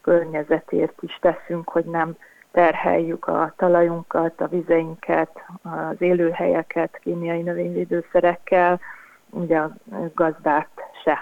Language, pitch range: Hungarian, 165-180 Hz